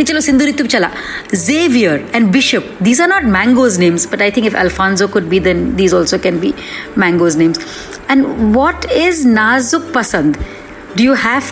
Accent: native